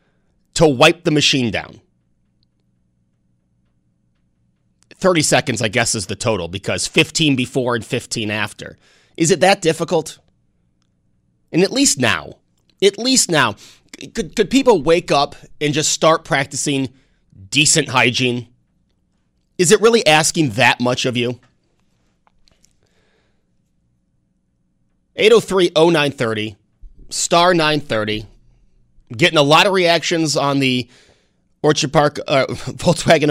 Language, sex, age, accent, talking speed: English, male, 30-49, American, 115 wpm